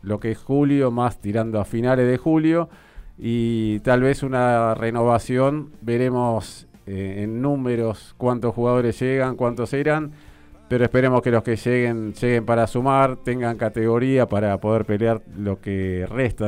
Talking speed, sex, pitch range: 150 wpm, male, 105-125 Hz